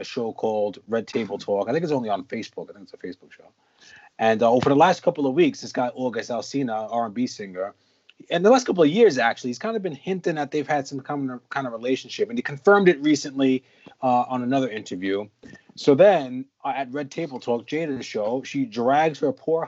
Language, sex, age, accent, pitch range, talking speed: English, male, 30-49, American, 130-175 Hz, 230 wpm